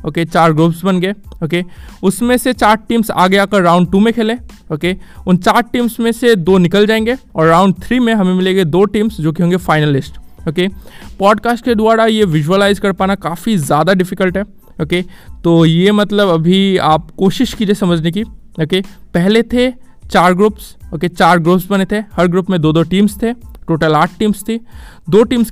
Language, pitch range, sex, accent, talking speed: Hindi, 180-220 Hz, male, native, 210 wpm